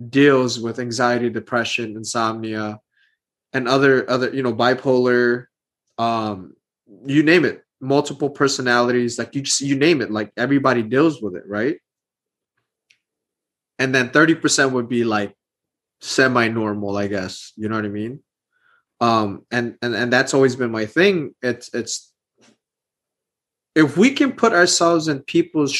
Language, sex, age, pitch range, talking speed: English, male, 20-39, 115-150 Hz, 145 wpm